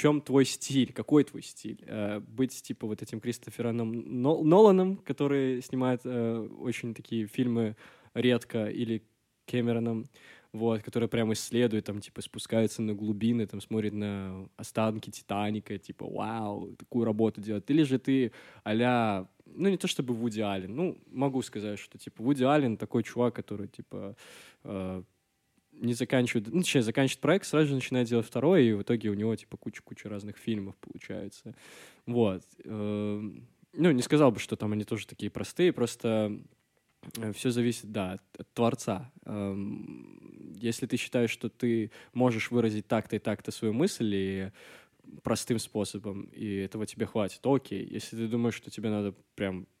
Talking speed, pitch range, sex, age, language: 150 wpm, 105-125 Hz, male, 20-39, Russian